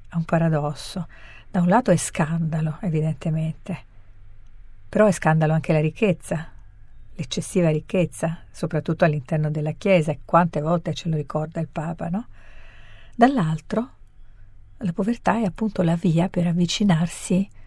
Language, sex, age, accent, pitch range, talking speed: Italian, female, 50-69, native, 150-190 Hz, 130 wpm